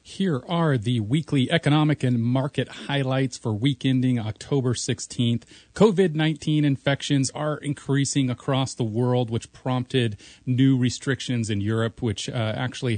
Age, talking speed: 40-59, 135 wpm